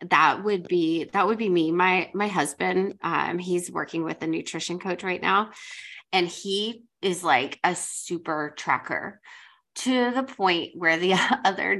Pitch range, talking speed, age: 160-200 Hz, 165 wpm, 20-39